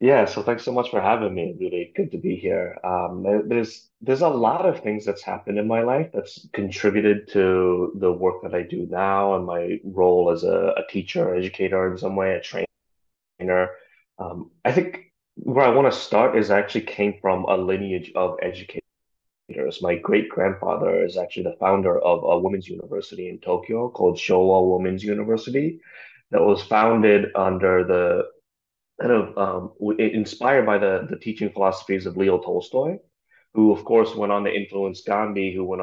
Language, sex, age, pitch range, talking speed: English, male, 30-49, 95-110 Hz, 180 wpm